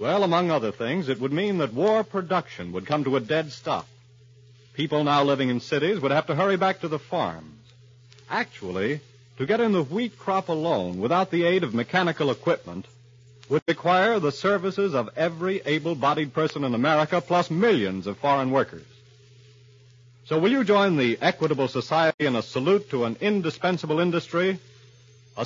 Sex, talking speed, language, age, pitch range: male, 170 wpm, English, 50-69, 125-180 Hz